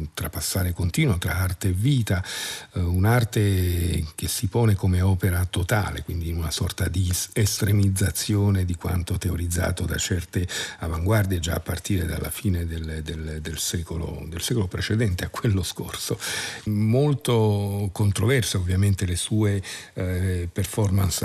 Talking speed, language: 135 wpm, Italian